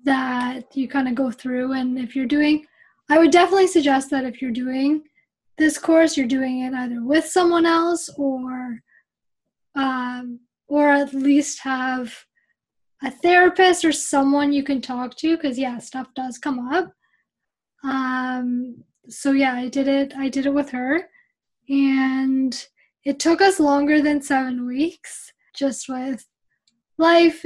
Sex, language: female, English